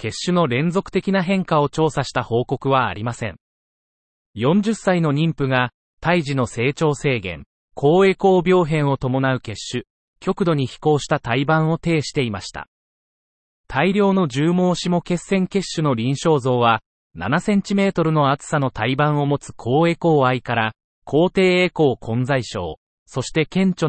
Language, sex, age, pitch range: Japanese, male, 30-49, 125-170 Hz